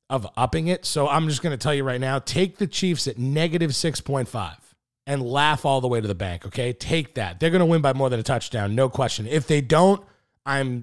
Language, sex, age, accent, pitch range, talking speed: English, male, 30-49, American, 120-165 Hz, 245 wpm